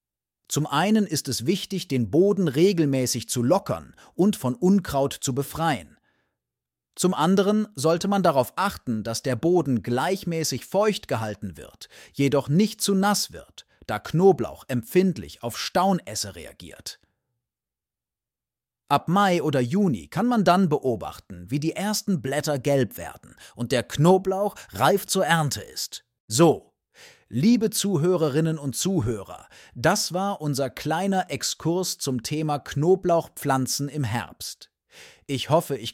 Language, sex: German, male